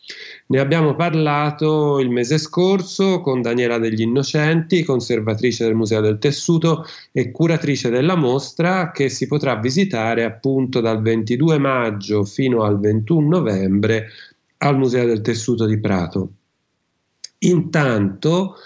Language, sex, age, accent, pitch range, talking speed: Italian, male, 40-59, native, 115-155 Hz, 120 wpm